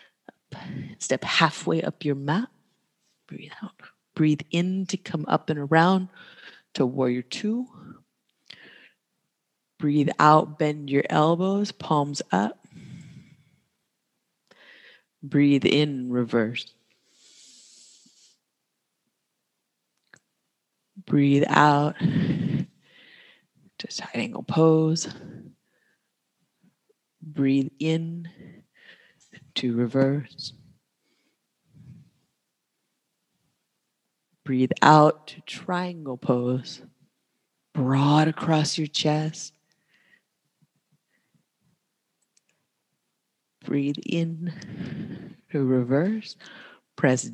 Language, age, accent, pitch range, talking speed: English, 30-49, American, 140-175 Hz, 65 wpm